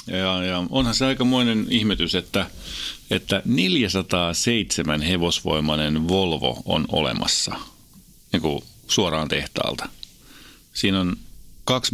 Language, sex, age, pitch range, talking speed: Finnish, male, 30-49, 85-110 Hz, 95 wpm